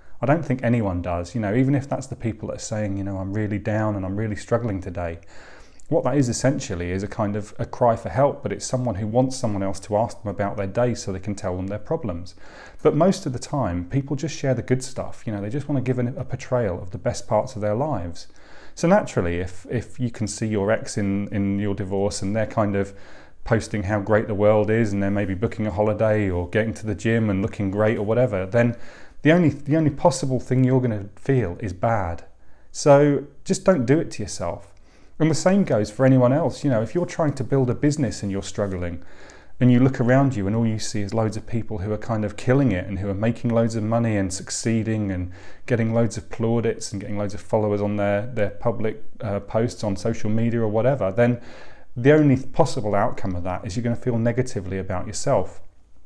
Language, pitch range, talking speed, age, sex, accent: English, 100-125 Hz, 240 wpm, 30-49, male, British